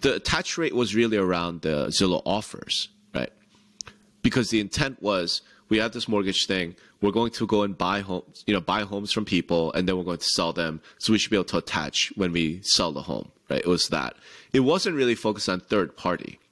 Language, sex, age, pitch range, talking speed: English, male, 30-49, 90-120 Hz, 225 wpm